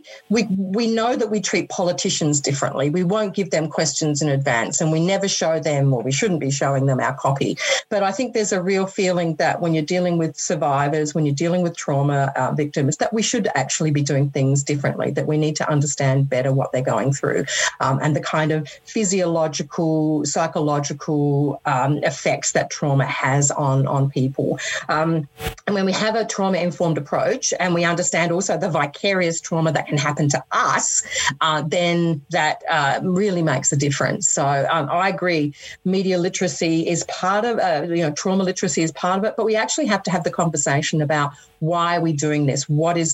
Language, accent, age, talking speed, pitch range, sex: English, Australian, 40-59, 200 wpm, 150-190 Hz, female